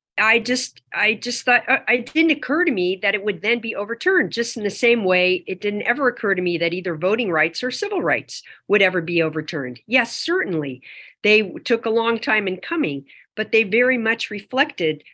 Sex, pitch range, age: female, 170-225 Hz, 50-69